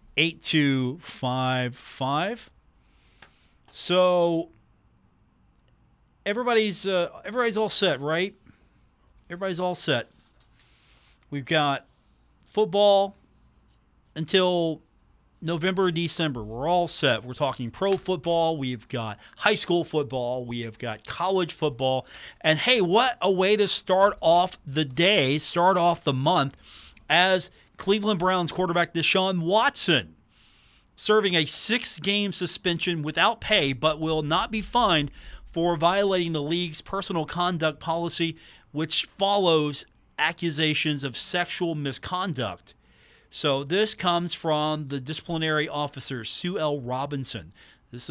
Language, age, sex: English, 40-59, male